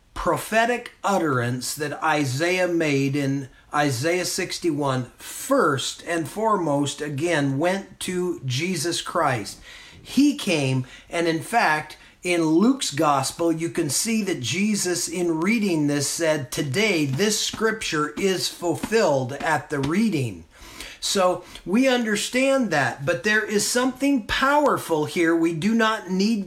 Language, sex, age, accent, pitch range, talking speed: English, male, 40-59, American, 160-245 Hz, 125 wpm